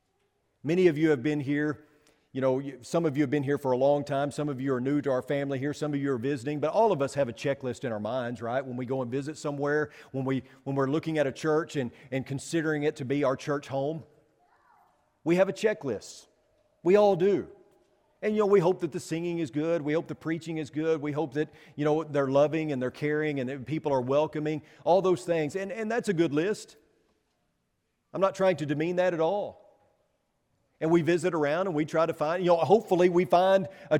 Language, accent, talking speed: English, American, 240 wpm